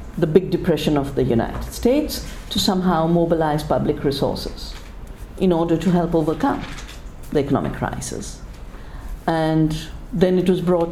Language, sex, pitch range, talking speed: English, female, 150-200 Hz, 135 wpm